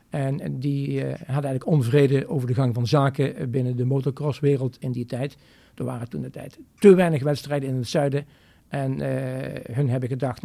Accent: Dutch